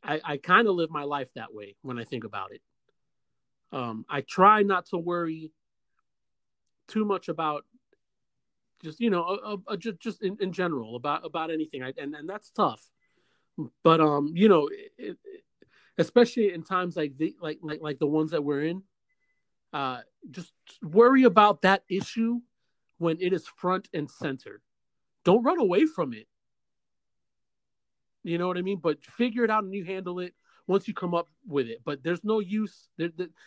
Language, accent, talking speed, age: English, American, 185 wpm, 40-59